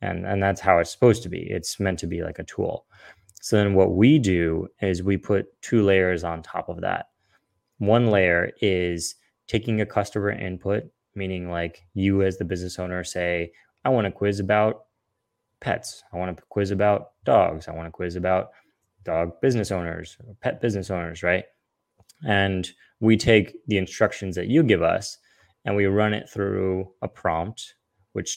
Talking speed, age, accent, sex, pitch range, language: 180 wpm, 20-39, American, male, 90-105 Hz, English